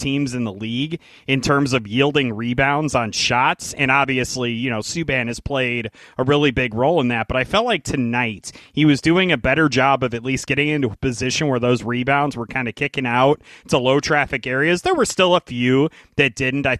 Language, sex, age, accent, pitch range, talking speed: English, male, 30-49, American, 120-145 Hz, 220 wpm